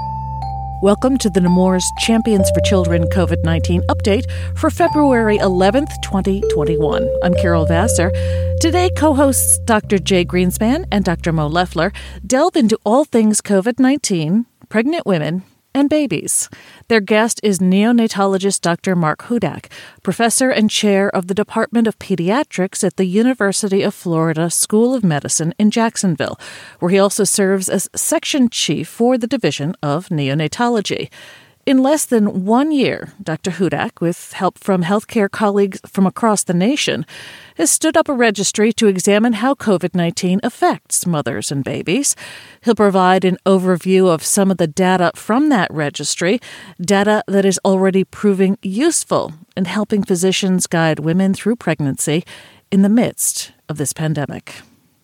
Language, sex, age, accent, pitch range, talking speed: English, female, 40-59, American, 160-225 Hz, 145 wpm